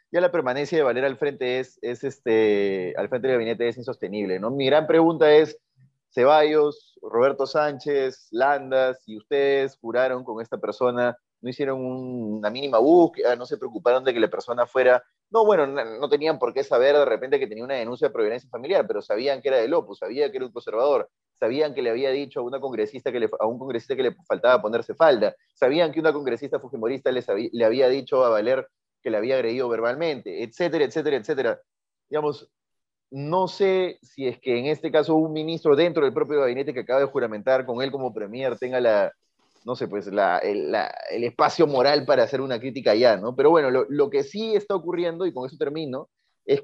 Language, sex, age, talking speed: Spanish, male, 30-49, 210 wpm